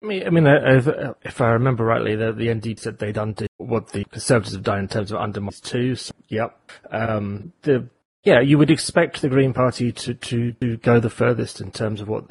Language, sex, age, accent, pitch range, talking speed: English, male, 30-49, British, 110-130 Hz, 200 wpm